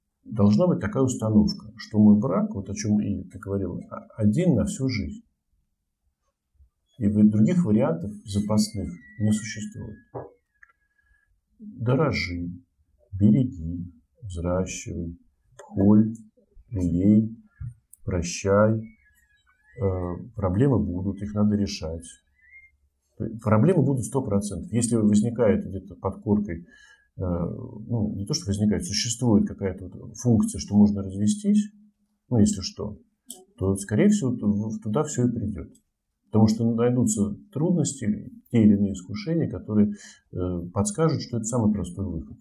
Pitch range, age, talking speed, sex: 95-115 Hz, 50-69, 110 wpm, male